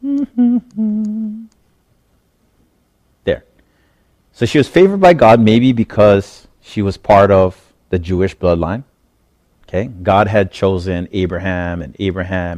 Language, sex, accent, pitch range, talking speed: English, male, American, 90-115 Hz, 110 wpm